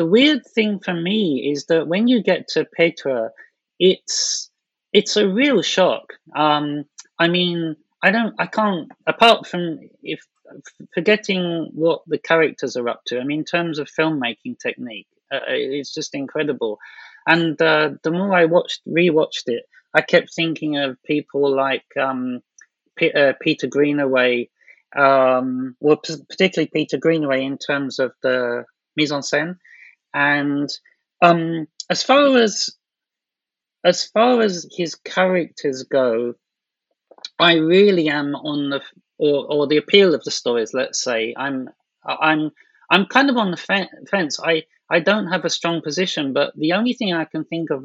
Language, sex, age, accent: English, male, 30-49, British